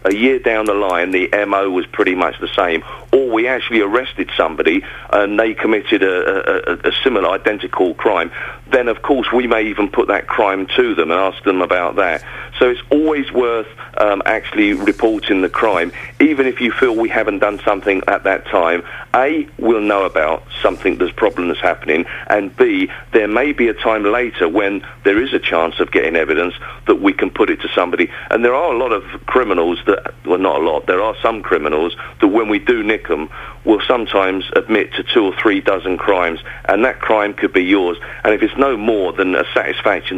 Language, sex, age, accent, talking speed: English, male, 40-59, British, 205 wpm